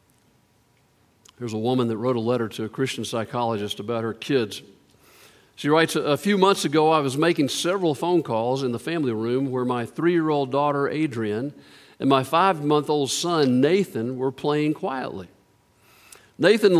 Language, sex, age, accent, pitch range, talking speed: English, male, 50-69, American, 140-215 Hz, 155 wpm